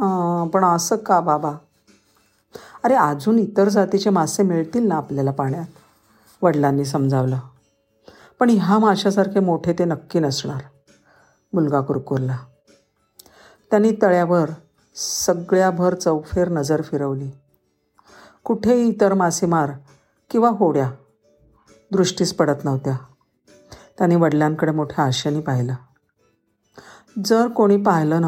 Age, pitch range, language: 50-69, 140-185 Hz, Marathi